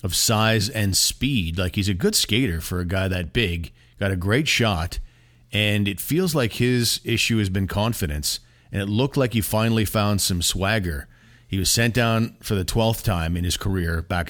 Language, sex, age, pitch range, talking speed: English, male, 40-59, 95-125 Hz, 200 wpm